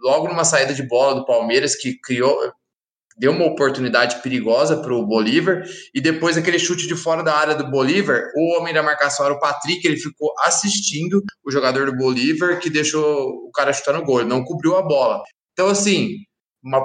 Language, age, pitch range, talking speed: Portuguese, 20-39, 135-205 Hz, 190 wpm